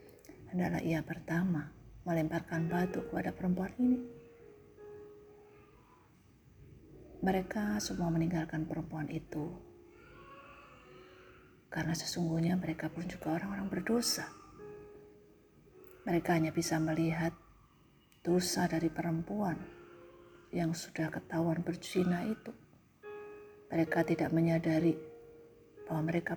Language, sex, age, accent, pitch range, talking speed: Indonesian, female, 40-59, native, 160-195 Hz, 85 wpm